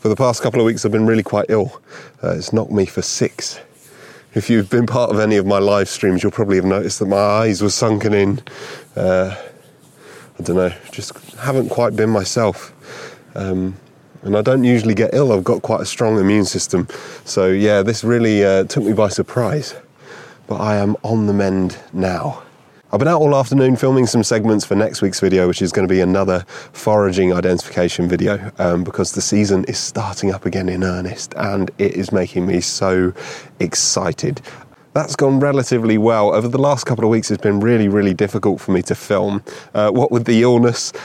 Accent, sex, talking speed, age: British, male, 200 wpm, 30-49